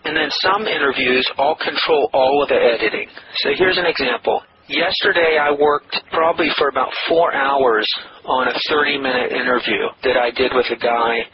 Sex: male